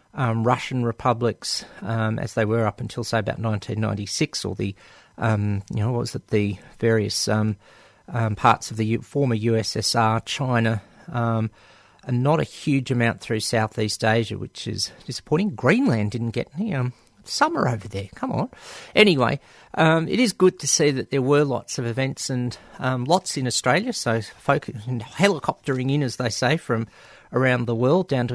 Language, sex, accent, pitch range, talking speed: English, male, Australian, 115-145 Hz, 180 wpm